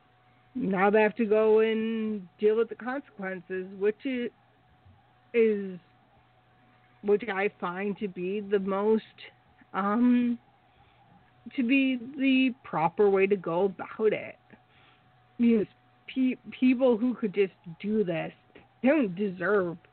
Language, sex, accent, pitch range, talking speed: English, female, American, 170-220 Hz, 125 wpm